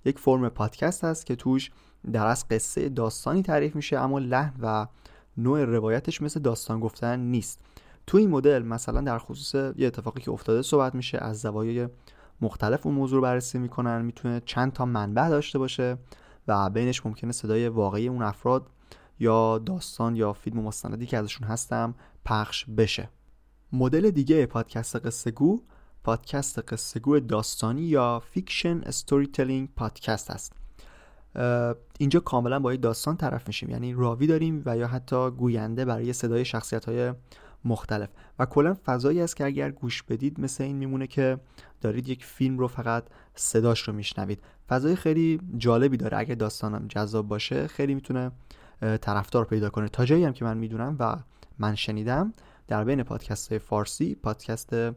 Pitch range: 110-135 Hz